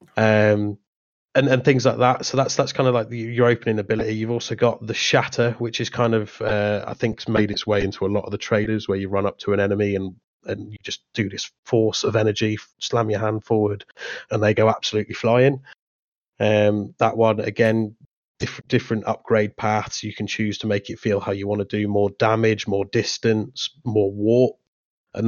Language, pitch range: English, 105-115 Hz